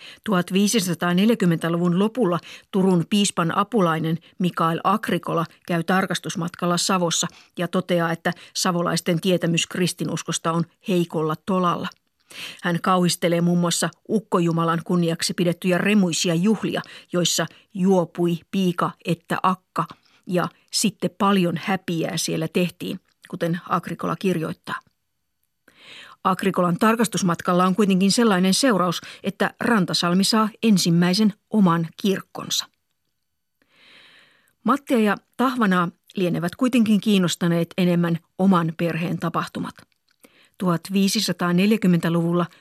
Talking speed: 90 wpm